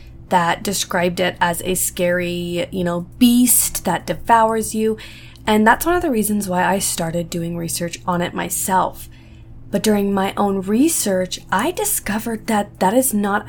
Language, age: English, 20-39